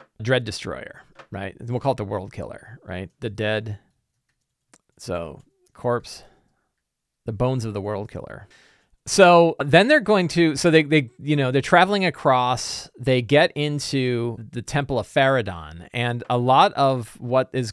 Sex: male